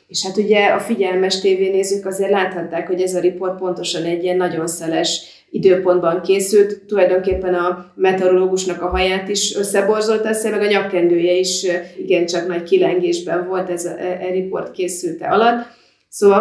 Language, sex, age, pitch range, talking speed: Hungarian, female, 30-49, 175-195 Hz, 160 wpm